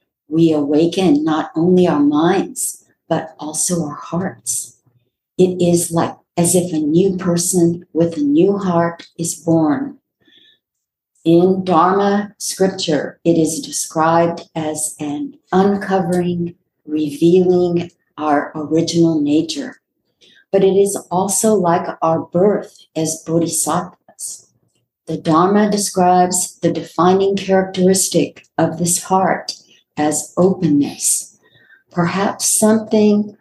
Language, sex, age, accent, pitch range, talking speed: English, female, 50-69, American, 160-185 Hz, 105 wpm